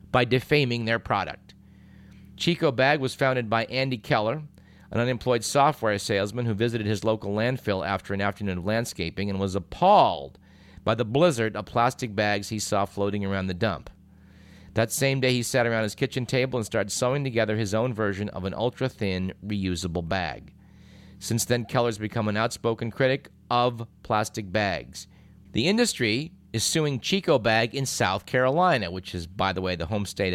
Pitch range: 95-125 Hz